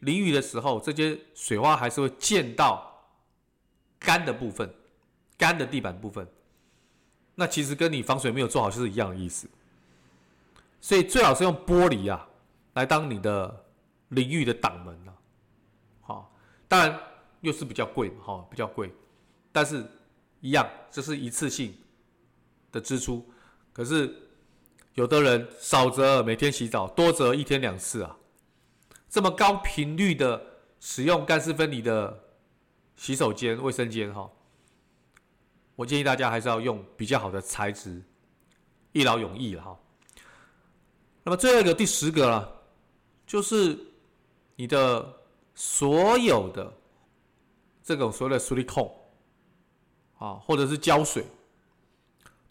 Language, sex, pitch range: Chinese, male, 110-150 Hz